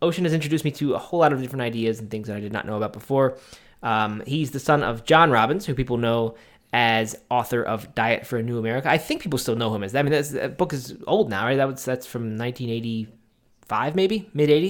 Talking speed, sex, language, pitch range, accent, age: 250 wpm, male, English, 110-140 Hz, American, 20-39